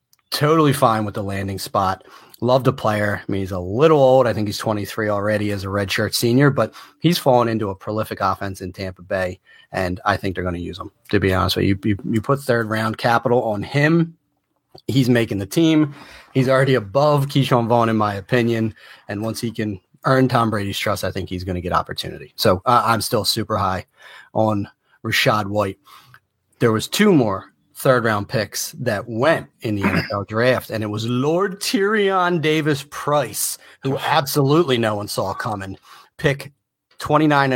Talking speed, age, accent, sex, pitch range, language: 185 wpm, 30-49, American, male, 105-145 Hz, English